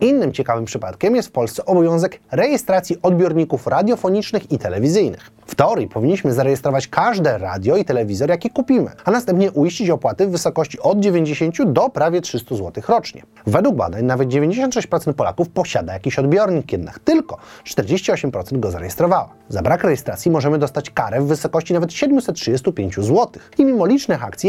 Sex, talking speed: male, 155 wpm